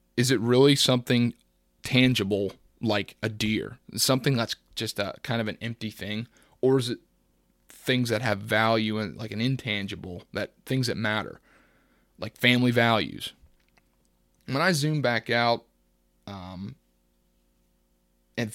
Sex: male